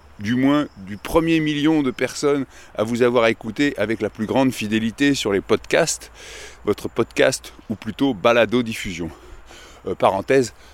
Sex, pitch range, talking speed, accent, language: male, 115-150 Hz, 145 wpm, French, French